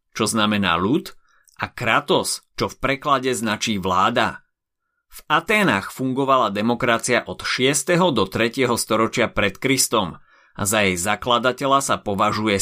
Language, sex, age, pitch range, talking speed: Slovak, male, 30-49, 105-135 Hz, 130 wpm